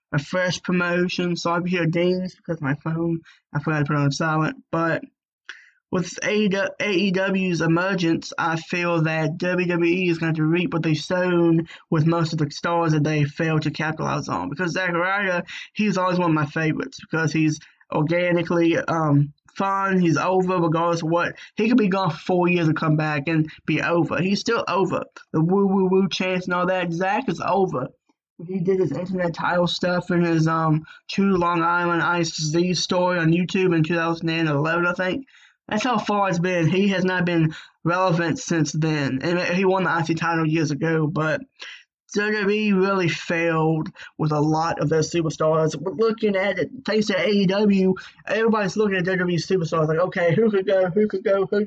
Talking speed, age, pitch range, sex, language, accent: 180 wpm, 20-39, 165-190 Hz, male, English, American